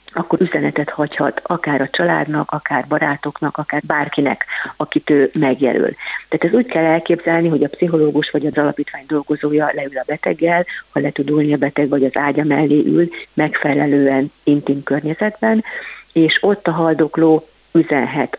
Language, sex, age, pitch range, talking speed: Hungarian, female, 50-69, 140-165 Hz, 150 wpm